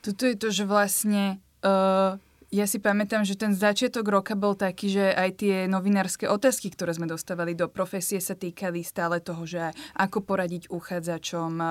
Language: Slovak